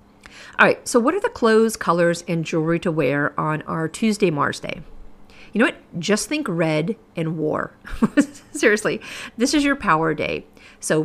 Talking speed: 175 wpm